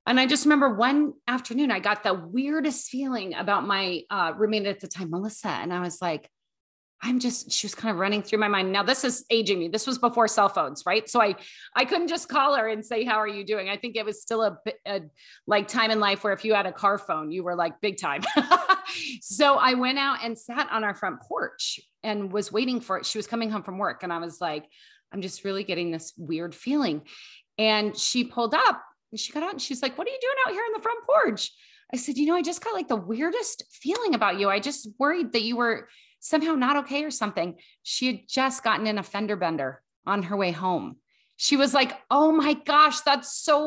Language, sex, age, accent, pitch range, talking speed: English, female, 30-49, American, 205-290 Hz, 240 wpm